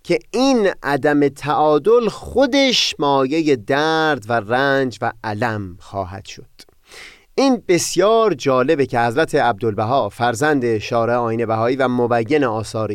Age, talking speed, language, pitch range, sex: 30-49, 115 wpm, Persian, 125-180 Hz, male